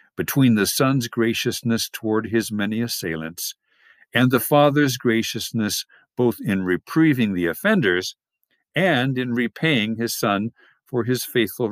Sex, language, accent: male, English, American